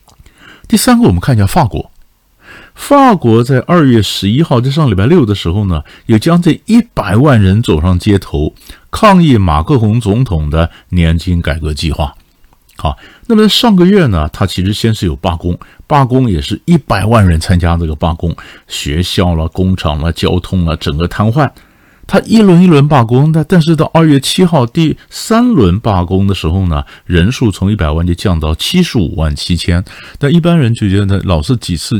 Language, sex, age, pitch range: Chinese, male, 50-69, 85-125 Hz